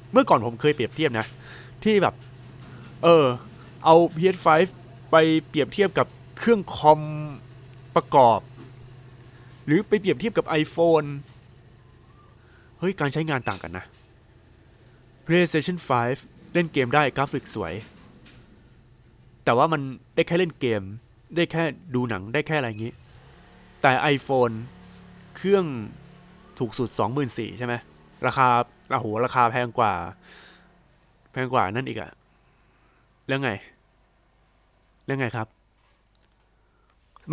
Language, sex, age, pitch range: Thai, male, 20-39, 115-145 Hz